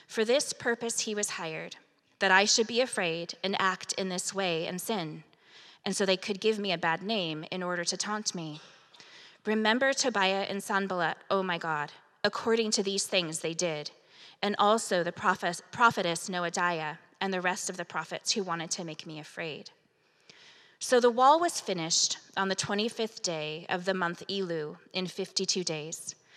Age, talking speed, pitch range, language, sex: 20-39, 175 wpm, 175-215 Hz, English, female